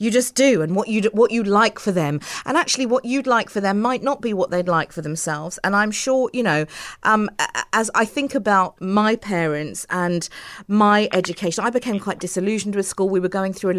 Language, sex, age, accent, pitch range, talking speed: English, female, 40-59, British, 175-230 Hz, 225 wpm